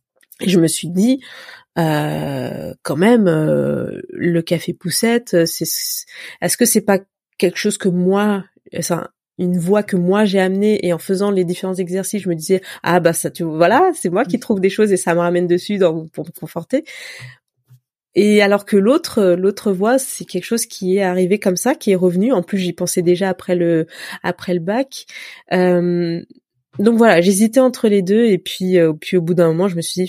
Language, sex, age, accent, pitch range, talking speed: French, female, 20-39, French, 170-200 Hz, 200 wpm